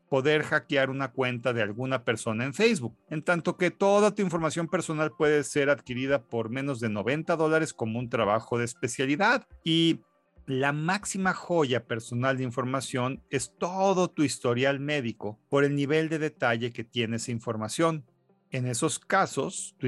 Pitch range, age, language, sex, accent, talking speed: 125-165 Hz, 50-69, Spanish, male, Mexican, 165 wpm